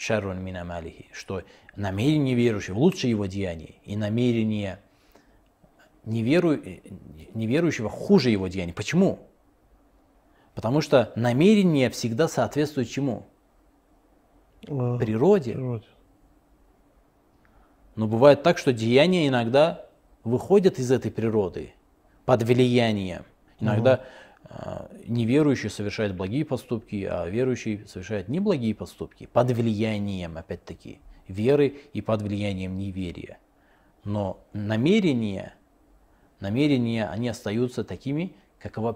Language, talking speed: Russian, 90 wpm